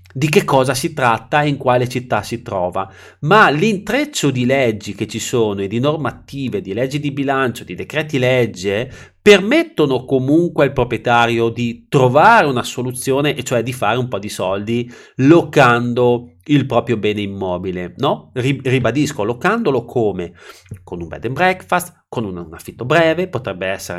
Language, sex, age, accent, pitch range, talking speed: Italian, male, 30-49, native, 115-170 Hz, 160 wpm